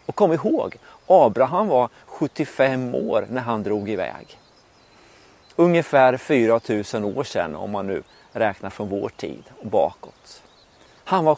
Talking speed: 135 wpm